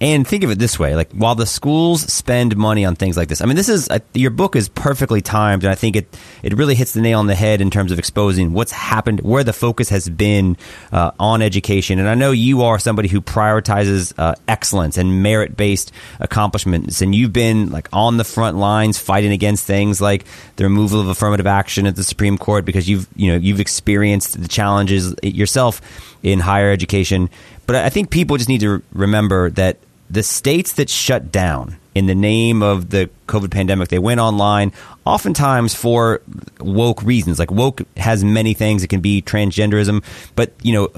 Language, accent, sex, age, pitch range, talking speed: English, American, male, 30-49, 100-120 Hz, 200 wpm